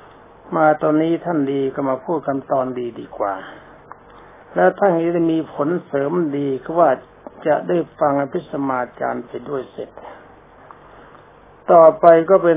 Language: Thai